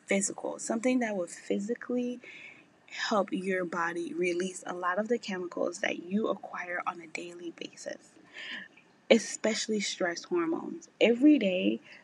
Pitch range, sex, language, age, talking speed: 180-255 Hz, female, English, 20-39, 130 wpm